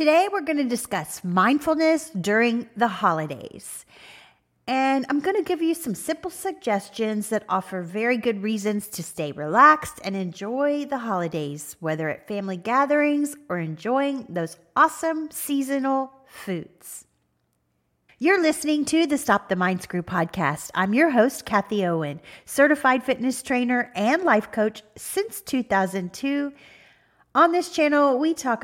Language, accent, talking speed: English, American, 140 wpm